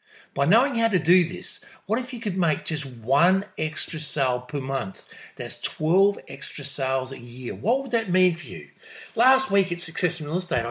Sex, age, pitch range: male, 50-69, 145-200 Hz